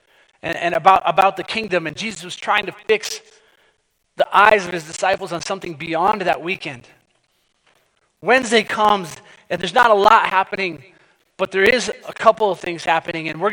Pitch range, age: 175-215 Hz, 30-49